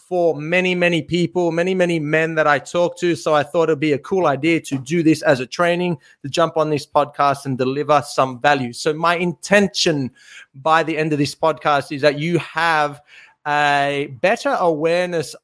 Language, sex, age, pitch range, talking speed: English, male, 30-49, 140-175 Hz, 195 wpm